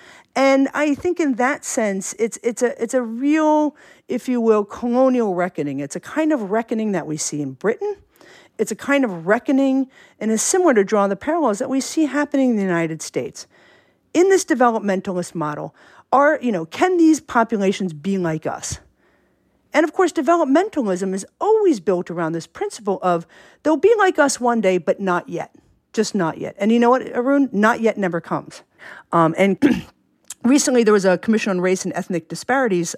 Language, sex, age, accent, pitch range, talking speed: English, female, 50-69, American, 190-280 Hz, 190 wpm